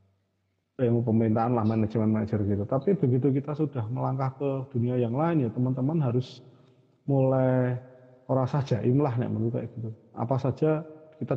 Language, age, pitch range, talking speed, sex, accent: Indonesian, 30-49, 115-140 Hz, 150 wpm, male, native